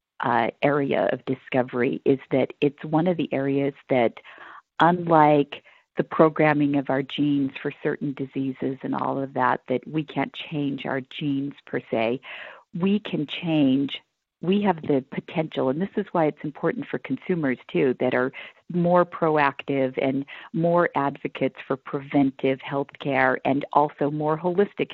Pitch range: 135-175 Hz